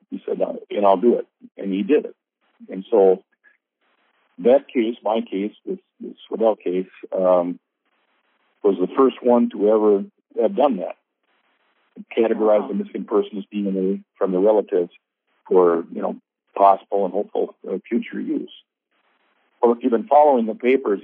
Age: 50-69